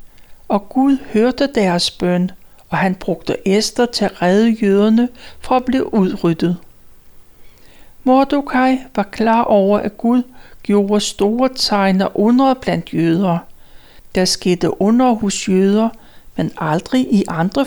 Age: 60-79